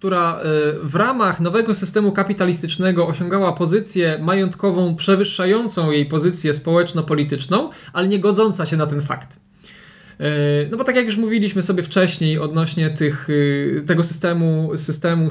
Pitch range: 160-205 Hz